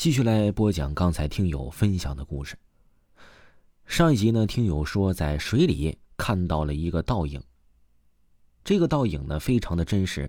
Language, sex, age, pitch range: Chinese, male, 30-49, 75-110 Hz